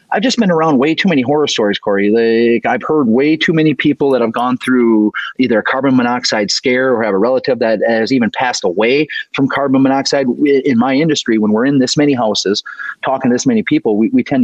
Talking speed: 230 wpm